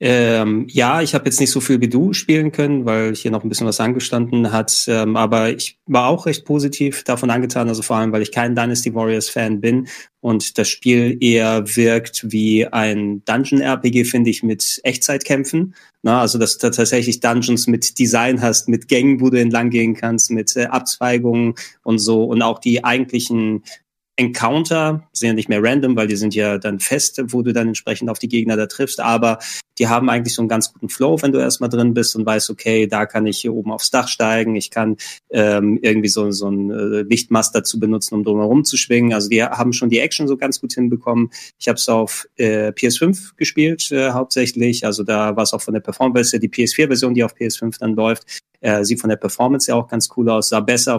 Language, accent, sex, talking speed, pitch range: German, German, male, 215 wpm, 110-125 Hz